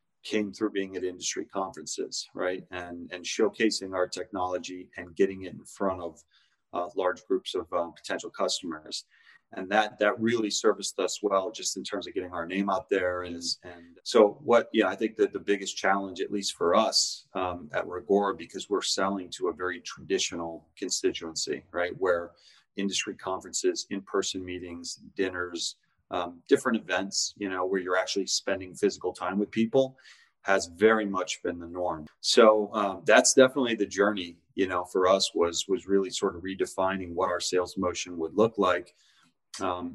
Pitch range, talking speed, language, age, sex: 90-105 Hz, 175 wpm, English, 30-49, male